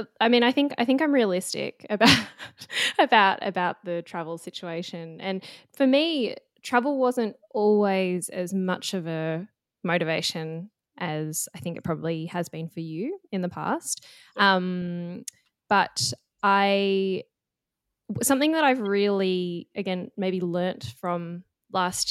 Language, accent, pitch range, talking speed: English, Australian, 175-215 Hz, 135 wpm